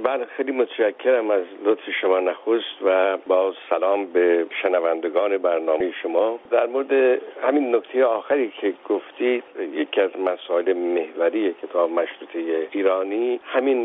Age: 60-79